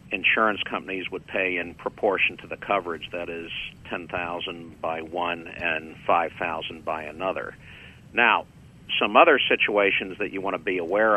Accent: American